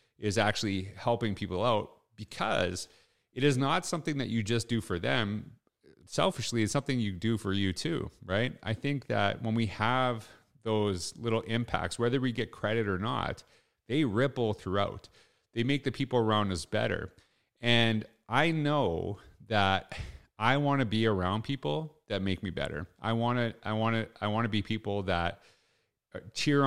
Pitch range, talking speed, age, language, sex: 95-120 Hz, 165 wpm, 30-49, English, male